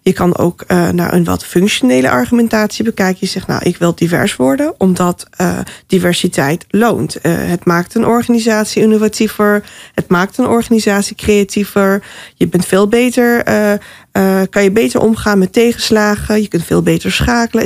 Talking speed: 170 wpm